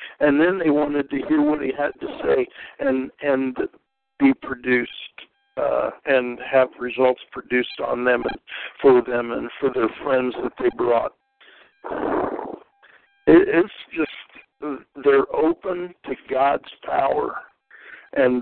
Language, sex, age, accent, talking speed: English, male, 60-79, American, 130 wpm